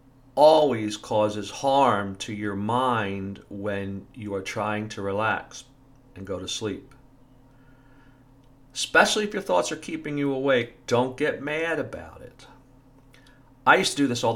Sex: male